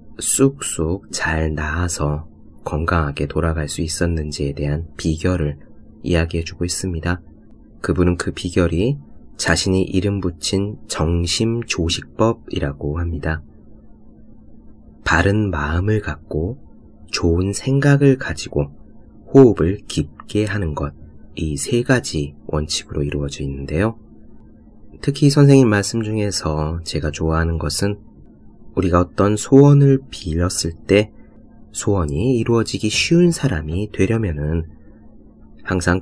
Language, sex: Korean, male